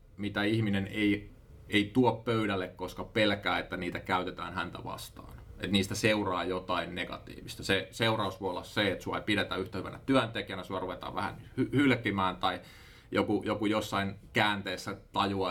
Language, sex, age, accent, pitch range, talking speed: Finnish, male, 30-49, native, 90-110 Hz, 155 wpm